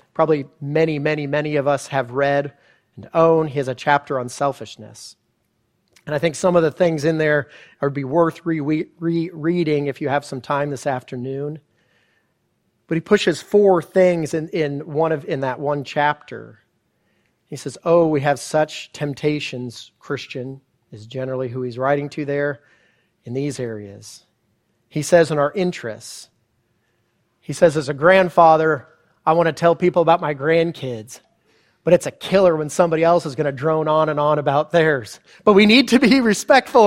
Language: English